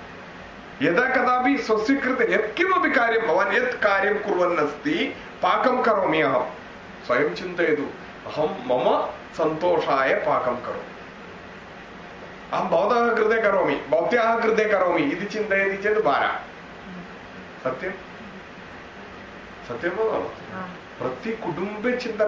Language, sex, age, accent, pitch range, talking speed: English, male, 30-49, Indian, 175-225 Hz, 45 wpm